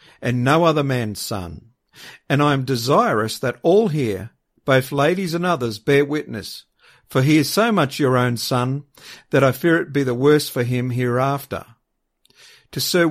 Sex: male